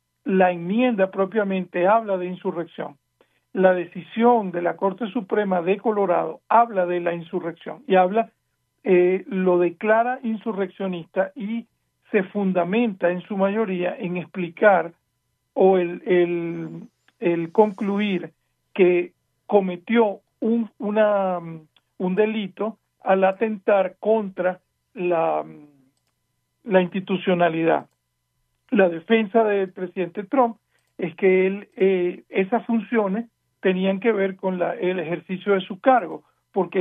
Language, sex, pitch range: Spanish, male, 180-220 Hz